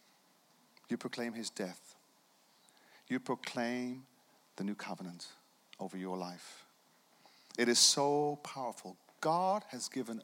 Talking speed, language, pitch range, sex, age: 110 wpm, English, 105-150 Hz, male, 50-69